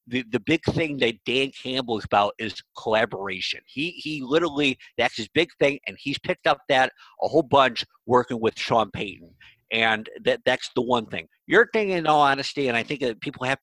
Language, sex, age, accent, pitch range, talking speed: English, male, 50-69, American, 125-150 Hz, 205 wpm